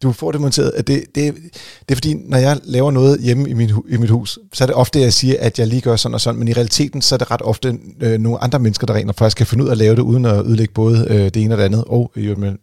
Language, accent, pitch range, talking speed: Danish, native, 105-125 Hz, 310 wpm